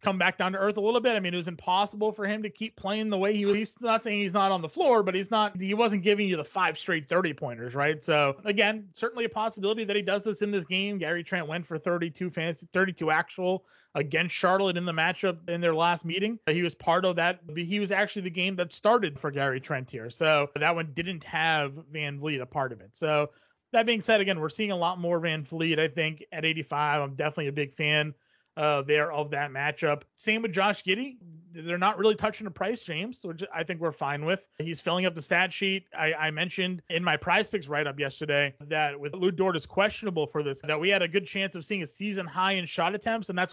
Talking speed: 250 wpm